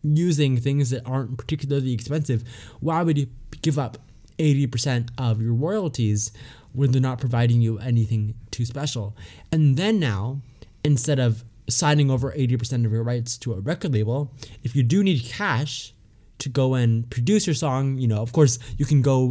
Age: 20-39